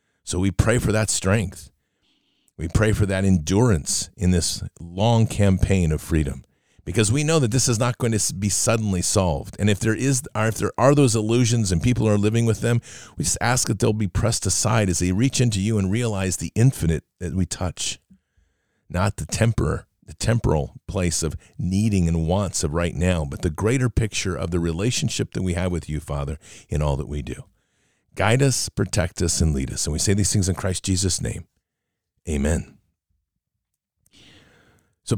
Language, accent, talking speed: English, American, 195 wpm